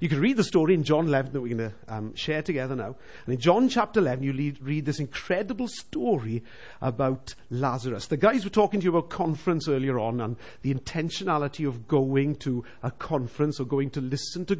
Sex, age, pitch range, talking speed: male, 50-69, 145-220 Hz, 210 wpm